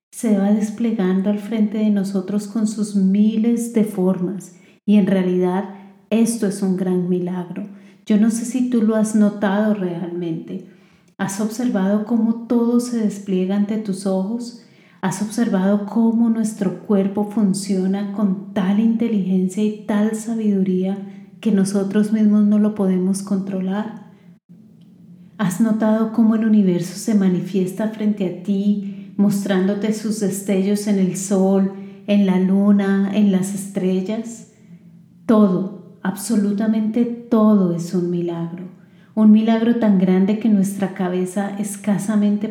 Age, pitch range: 30-49, 185-215 Hz